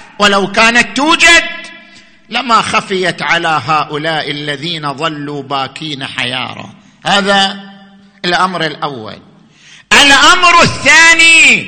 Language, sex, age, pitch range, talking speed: Arabic, male, 50-69, 190-280 Hz, 80 wpm